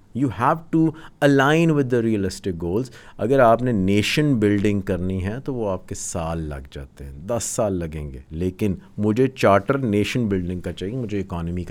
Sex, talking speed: male, 165 wpm